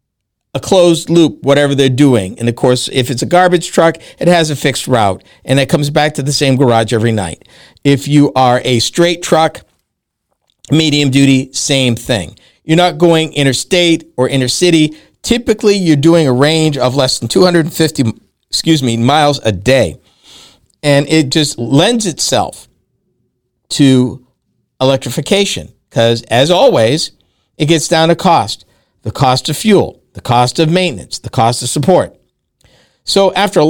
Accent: American